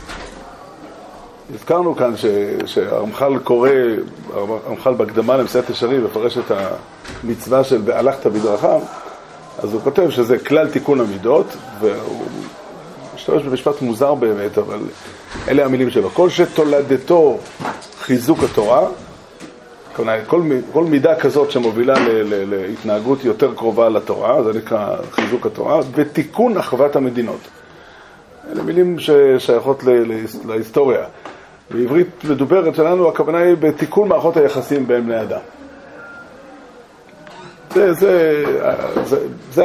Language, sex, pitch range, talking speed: Hebrew, male, 125-215 Hz, 110 wpm